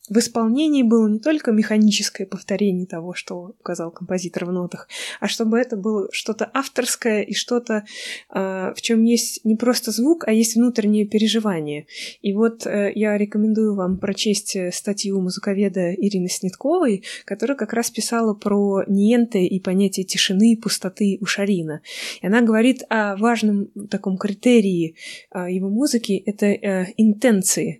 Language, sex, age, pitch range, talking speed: Russian, female, 20-39, 190-230 Hz, 140 wpm